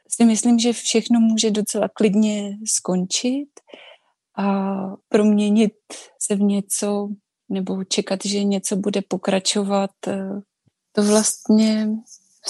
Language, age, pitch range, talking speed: Czech, 20-39, 205-235 Hz, 105 wpm